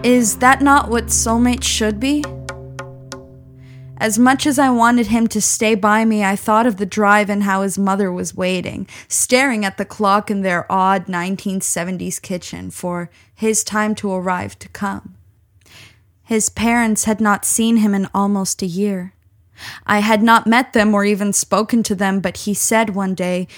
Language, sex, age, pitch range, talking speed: English, female, 10-29, 180-215 Hz, 175 wpm